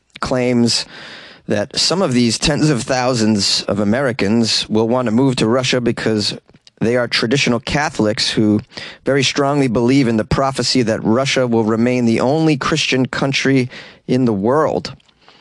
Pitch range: 110-135 Hz